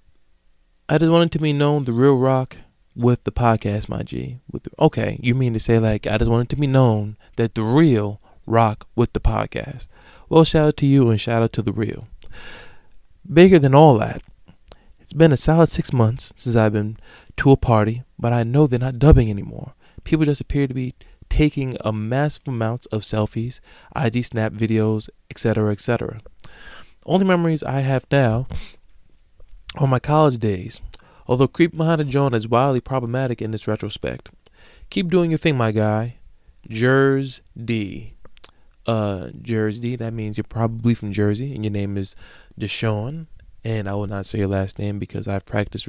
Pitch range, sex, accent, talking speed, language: 105-140 Hz, male, American, 185 wpm, English